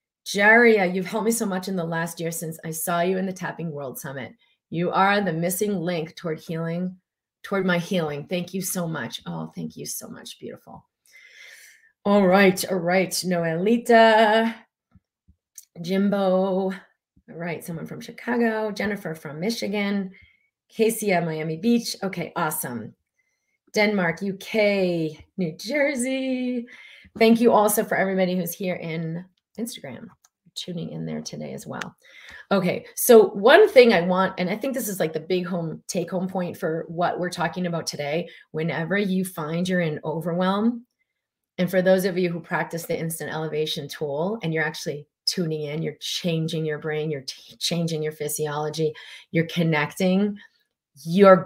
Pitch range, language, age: 165-205 Hz, English, 30-49